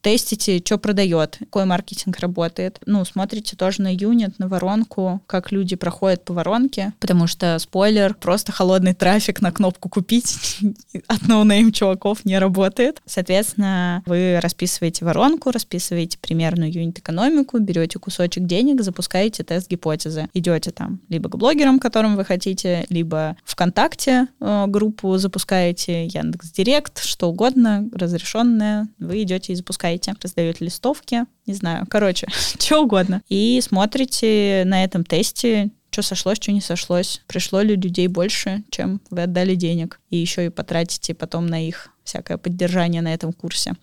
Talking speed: 140 wpm